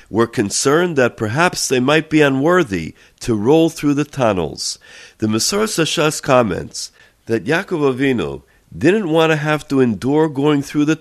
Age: 50-69